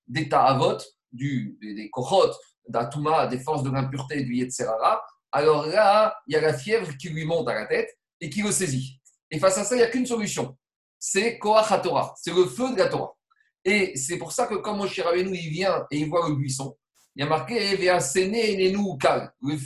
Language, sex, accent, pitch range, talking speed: French, male, French, 155-215 Hz, 225 wpm